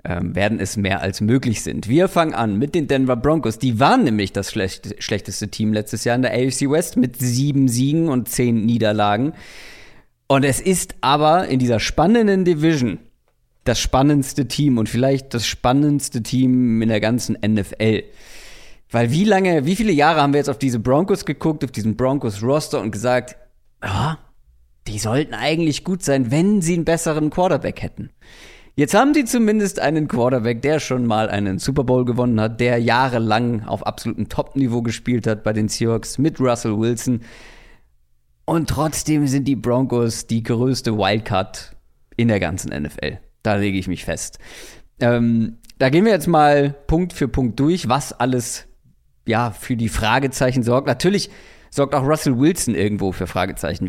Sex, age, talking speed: male, 40-59, 165 wpm